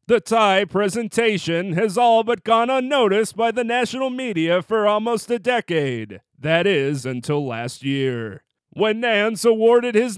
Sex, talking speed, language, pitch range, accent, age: male, 145 wpm, English, 160-230 Hz, American, 30-49